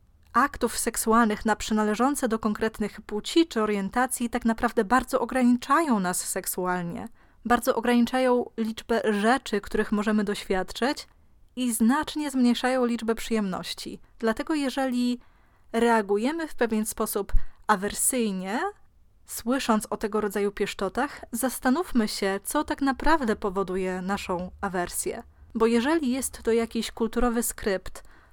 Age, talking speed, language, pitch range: 20-39, 115 wpm, Polish, 205-245 Hz